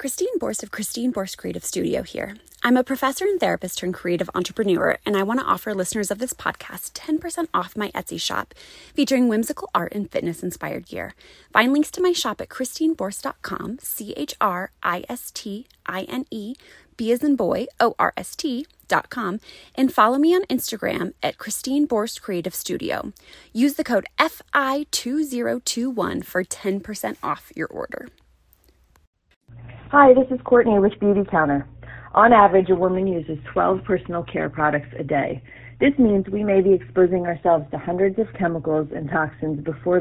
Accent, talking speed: American, 175 wpm